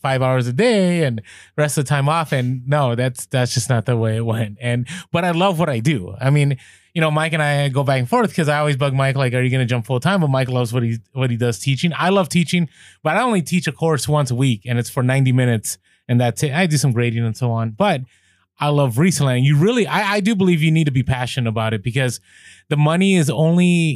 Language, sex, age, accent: English, male, 20-39, American